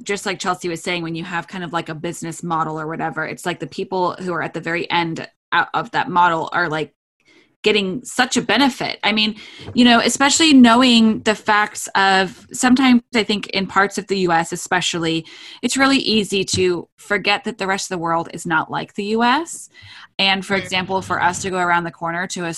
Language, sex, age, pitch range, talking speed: English, female, 20-39, 170-215 Hz, 220 wpm